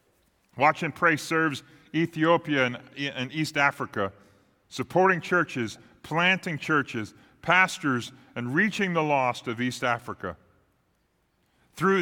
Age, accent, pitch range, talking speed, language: 40-59, American, 115-155 Hz, 105 wpm, English